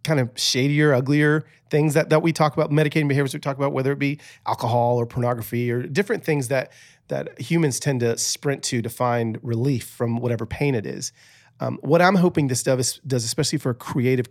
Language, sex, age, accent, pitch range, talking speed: English, male, 40-59, American, 120-155 Hz, 210 wpm